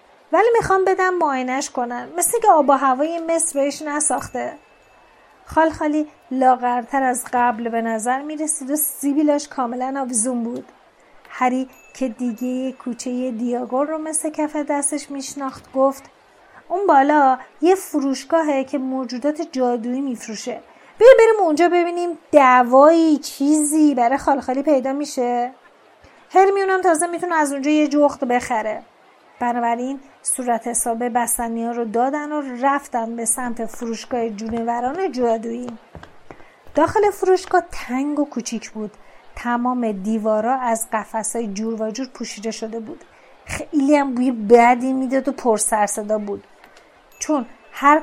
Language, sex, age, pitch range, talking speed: Persian, female, 30-49, 240-295 Hz, 130 wpm